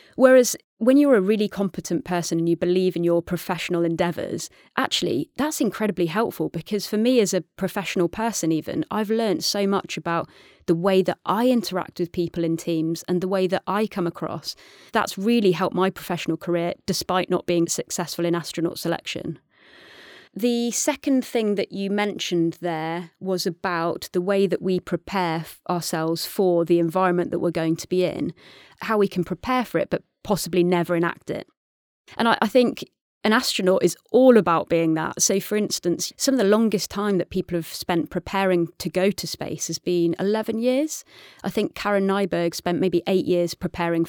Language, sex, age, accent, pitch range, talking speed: English, female, 20-39, British, 170-205 Hz, 185 wpm